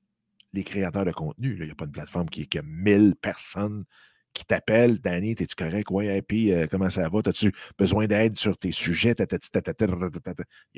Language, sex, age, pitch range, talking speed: French, male, 50-69, 95-130 Hz, 200 wpm